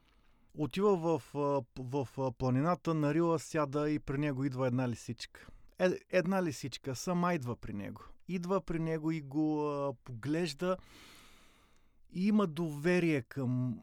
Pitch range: 130-160 Hz